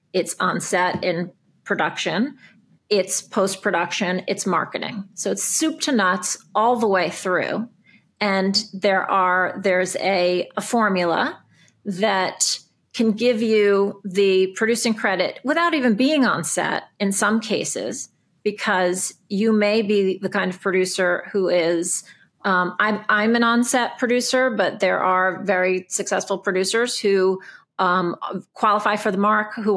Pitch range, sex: 180-210 Hz, female